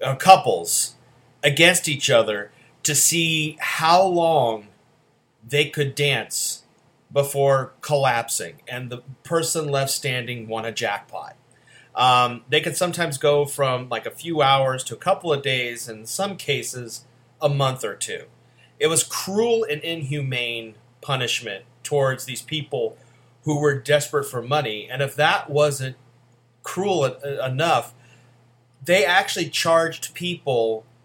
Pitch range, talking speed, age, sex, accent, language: 120-150 Hz, 130 wpm, 30-49, male, American, English